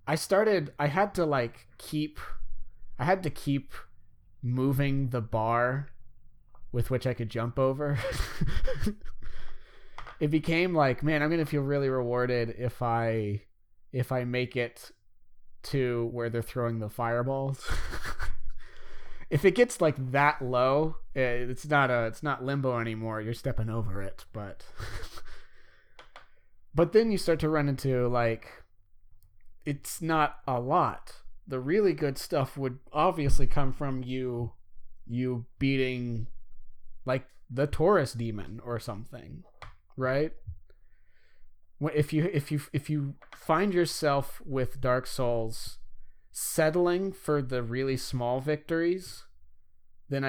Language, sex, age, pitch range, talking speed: English, male, 20-39, 110-145 Hz, 130 wpm